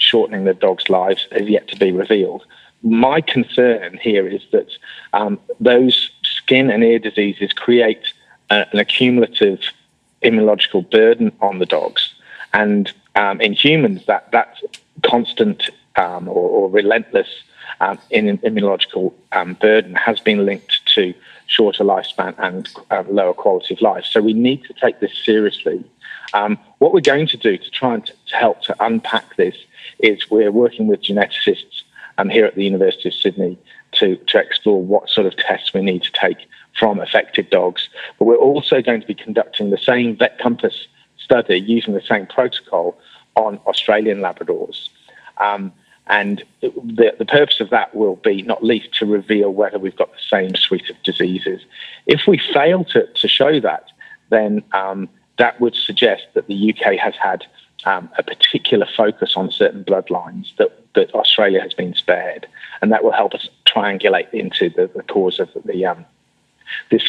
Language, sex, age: English, male, 40-59